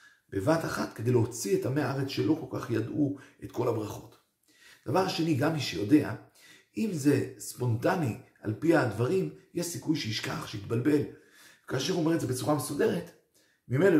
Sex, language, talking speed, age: male, Hebrew, 160 wpm, 50-69